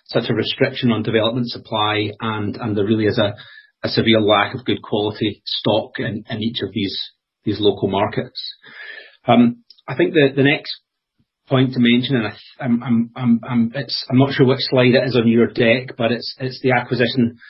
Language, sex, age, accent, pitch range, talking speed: English, male, 30-49, British, 110-125 Hz, 200 wpm